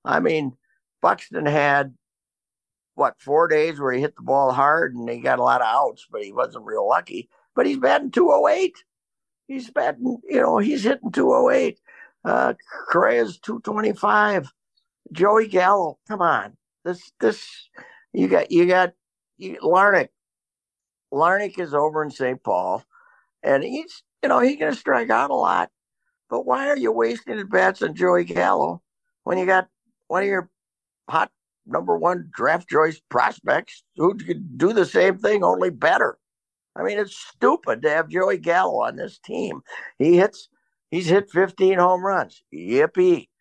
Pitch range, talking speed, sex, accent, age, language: 140-225 Hz, 165 wpm, male, American, 50-69, English